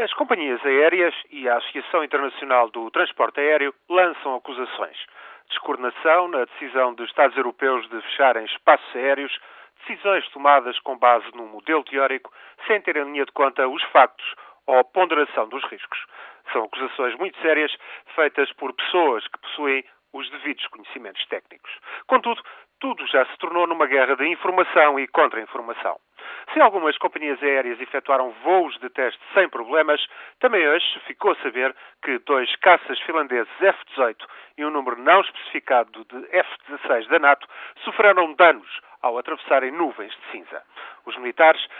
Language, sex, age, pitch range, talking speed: Portuguese, male, 40-59, 135-185 Hz, 150 wpm